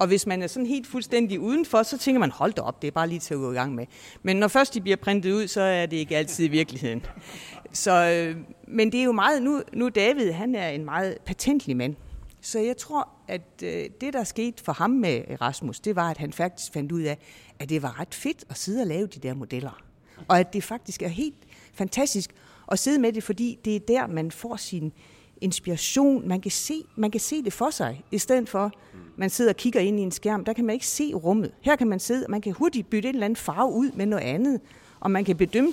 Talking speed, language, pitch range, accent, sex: 255 wpm, Danish, 160-235 Hz, native, female